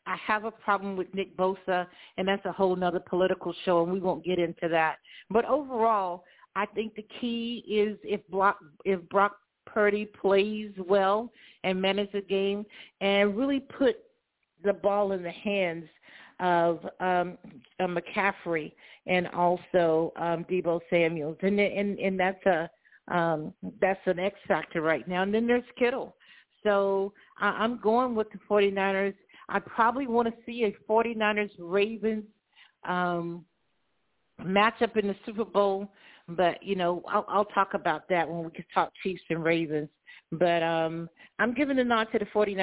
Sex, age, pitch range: female, 50-69, 175-210 Hz